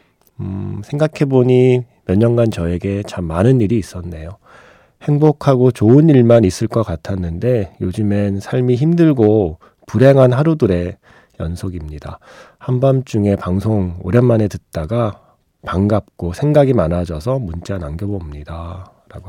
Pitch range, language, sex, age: 90-125 Hz, Korean, male, 40-59